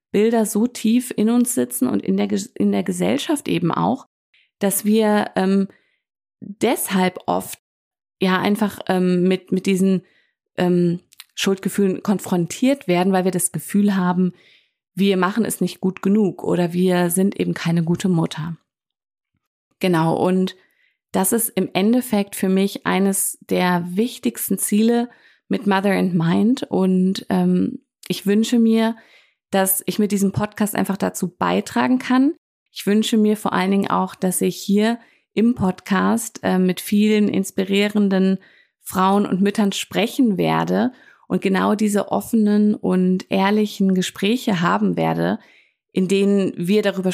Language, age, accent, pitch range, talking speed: German, 30-49, German, 185-215 Hz, 140 wpm